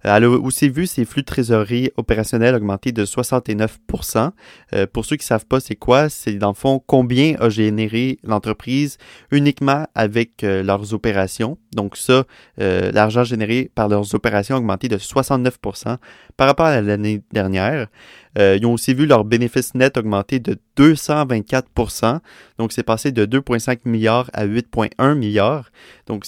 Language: French